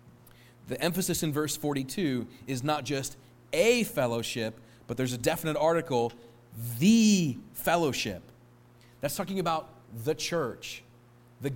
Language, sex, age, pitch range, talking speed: English, male, 40-59, 120-175 Hz, 120 wpm